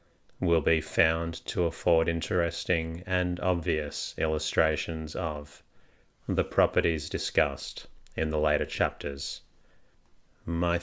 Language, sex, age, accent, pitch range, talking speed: English, male, 30-49, Australian, 80-90 Hz, 100 wpm